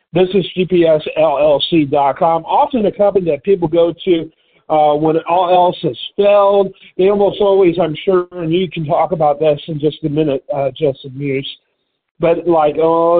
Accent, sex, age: American, male, 50-69